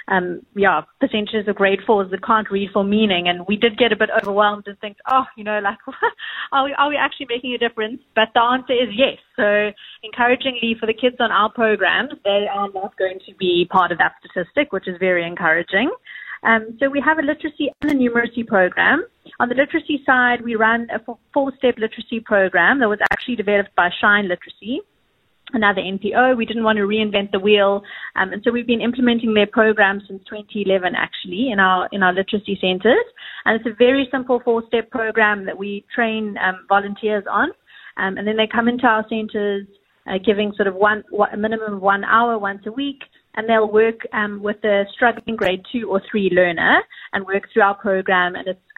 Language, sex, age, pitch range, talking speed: English, female, 30-49, 200-240 Hz, 205 wpm